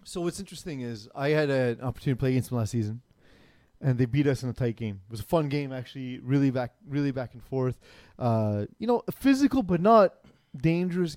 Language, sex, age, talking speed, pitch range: English, male, 30-49, 225 wpm, 125-155 Hz